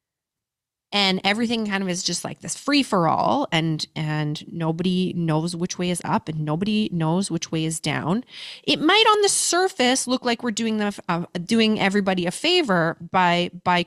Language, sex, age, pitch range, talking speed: English, female, 20-39, 170-235 Hz, 185 wpm